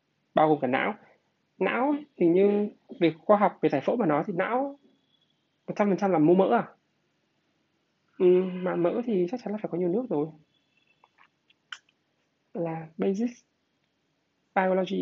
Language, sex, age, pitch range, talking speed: Vietnamese, male, 20-39, 155-200 Hz, 155 wpm